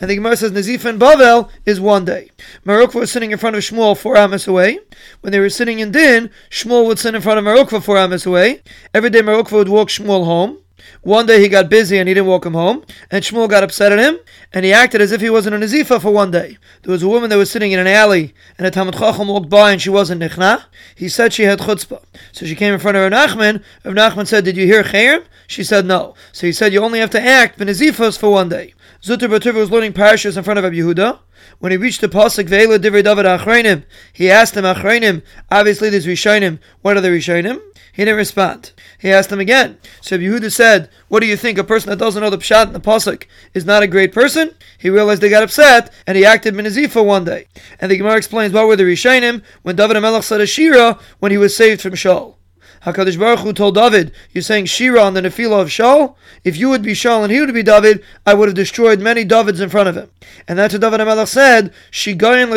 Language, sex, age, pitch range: English, male, 30-49, 195-230 Hz